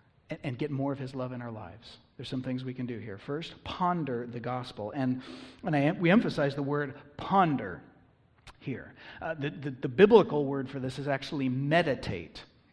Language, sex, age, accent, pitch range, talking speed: English, male, 40-59, American, 125-170 Hz, 185 wpm